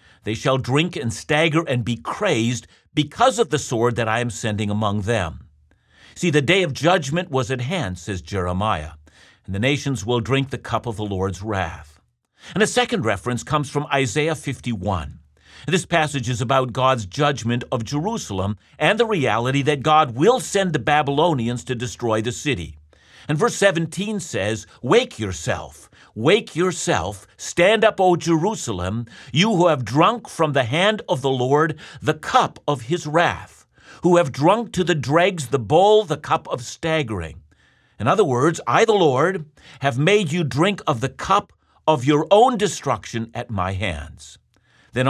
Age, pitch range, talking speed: 50-69, 110-160 Hz, 170 wpm